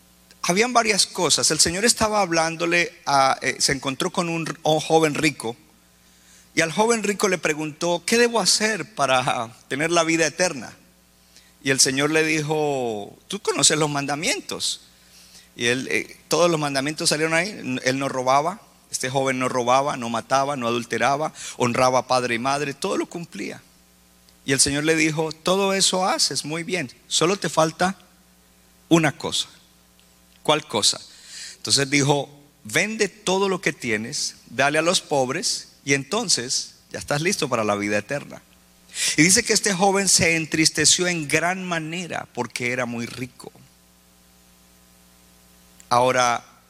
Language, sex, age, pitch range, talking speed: Spanish, male, 50-69, 110-160 Hz, 150 wpm